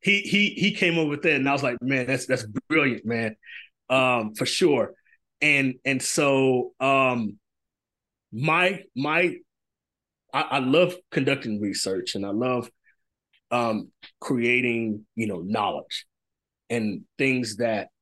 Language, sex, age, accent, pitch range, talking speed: English, male, 30-49, American, 115-135 Hz, 135 wpm